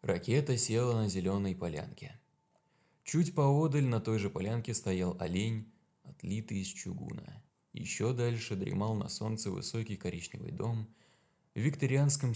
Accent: native